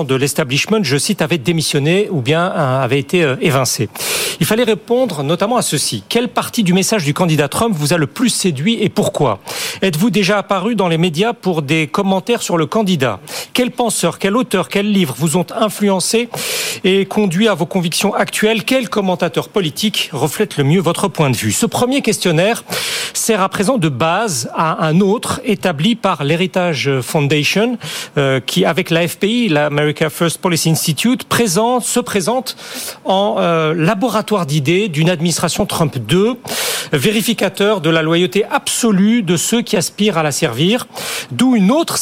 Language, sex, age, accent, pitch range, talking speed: French, male, 40-59, French, 165-220 Hz, 170 wpm